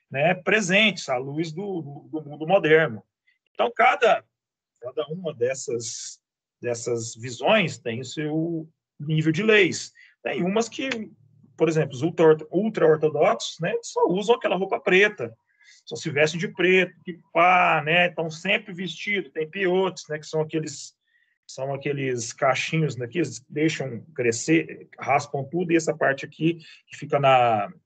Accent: Brazilian